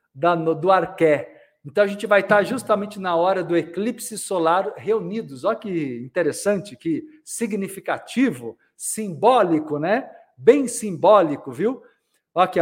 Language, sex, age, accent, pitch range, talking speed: Portuguese, male, 50-69, Brazilian, 155-205 Hz, 120 wpm